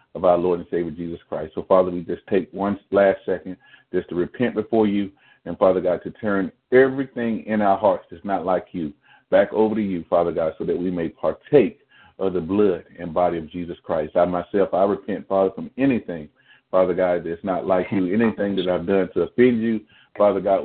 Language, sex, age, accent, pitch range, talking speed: English, male, 40-59, American, 90-105 Hz, 215 wpm